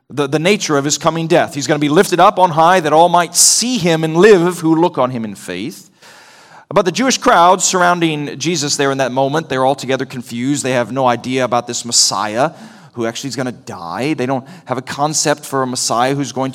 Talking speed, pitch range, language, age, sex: 230 wpm, 125-165 Hz, English, 40-59, male